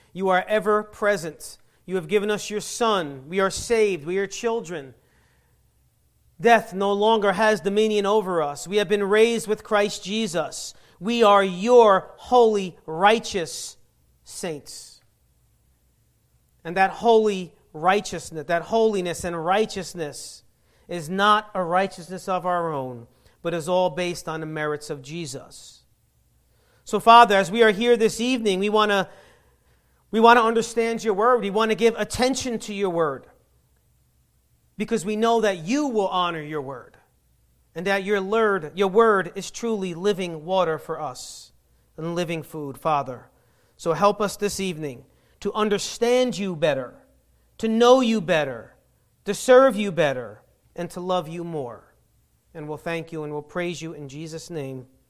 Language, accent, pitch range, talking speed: English, American, 160-215 Hz, 150 wpm